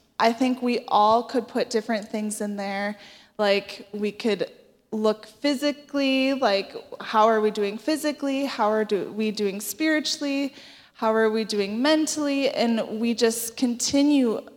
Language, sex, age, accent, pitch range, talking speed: English, female, 20-39, American, 215-260 Hz, 145 wpm